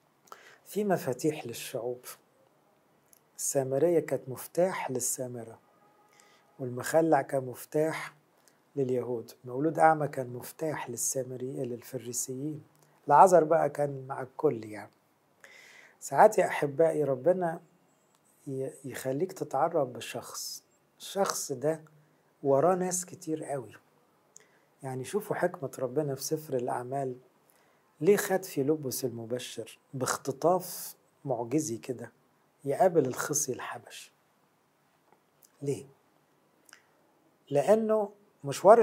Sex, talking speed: male, 90 wpm